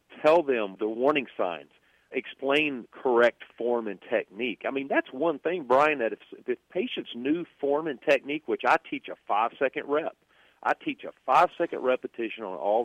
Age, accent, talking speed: 40-59, American, 175 wpm